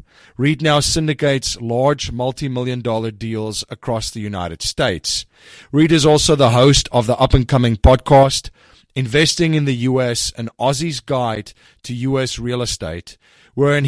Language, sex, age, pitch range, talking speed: English, male, 30-49, 115-145 Hz, 150 wpm